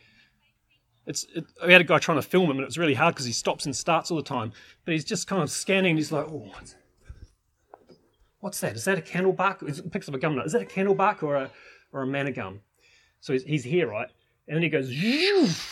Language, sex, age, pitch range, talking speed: English, male, 30-49, 145-210 Hz, 255 wpm